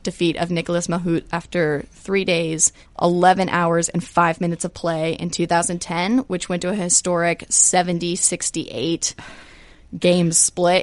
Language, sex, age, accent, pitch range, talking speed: English, female, 20-39, American, 165-180 Hz, 140 wpm